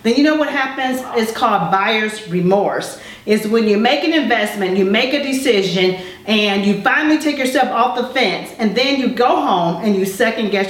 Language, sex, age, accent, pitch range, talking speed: English, female, 40-59, American, 210-265 Hz, 200 wpm